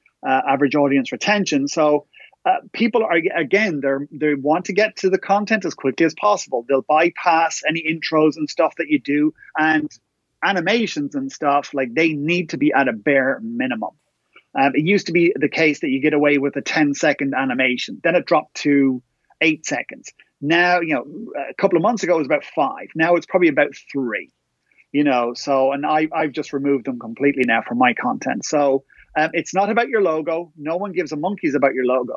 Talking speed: 205 wpm